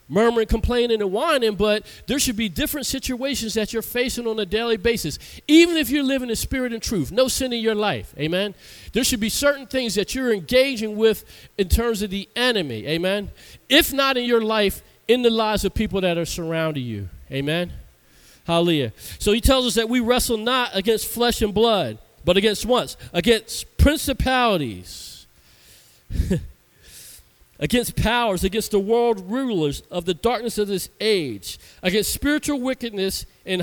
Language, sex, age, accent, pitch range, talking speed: English, male, 40-59, American, 155-235 Hz, 170 wpm